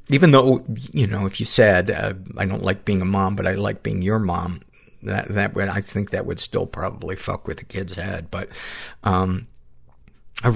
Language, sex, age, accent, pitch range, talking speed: English, male, 50-69, American, 95-110 Hz, 210 wpm